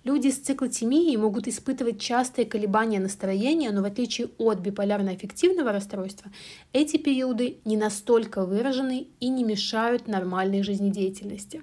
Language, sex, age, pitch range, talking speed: Russian, female, 30-49, 210-265 Hz, 125 wpm